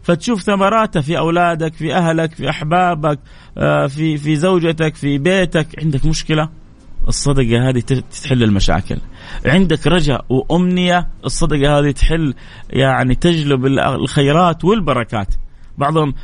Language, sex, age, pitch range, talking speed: Arabic, male, 30-49, 140-185 Hz, 110 wpm